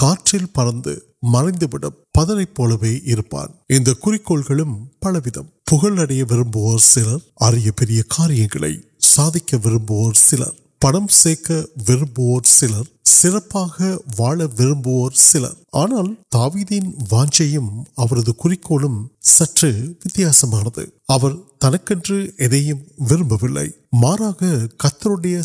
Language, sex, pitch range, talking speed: Urdu, male, 125-170 Hz, 35 wpm